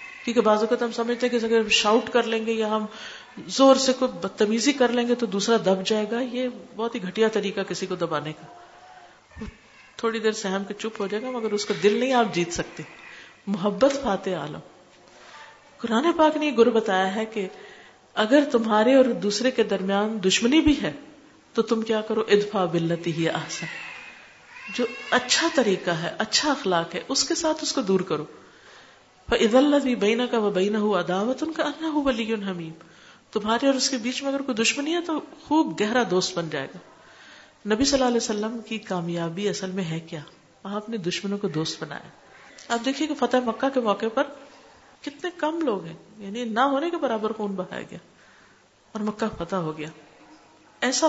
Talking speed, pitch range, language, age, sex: 175 wpm, 200-270 Hz, Urdu, 50-69, female